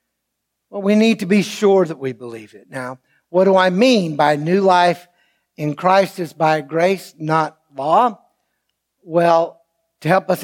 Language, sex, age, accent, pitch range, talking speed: English, male, 60-79, American, 155-220 Hz, 165 wpm